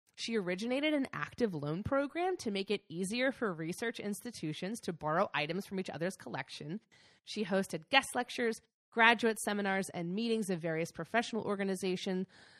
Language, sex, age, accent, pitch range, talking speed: English, female, 30-49, American, 165-220 Hz, 150 wpm